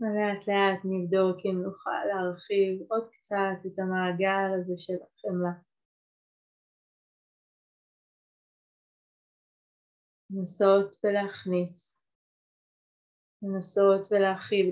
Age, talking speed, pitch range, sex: 30-49, 70 wpm, 180-205 Hz, female